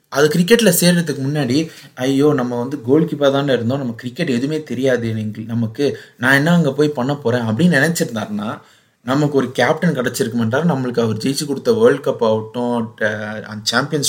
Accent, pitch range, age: native, 120-175 Hz, 30-49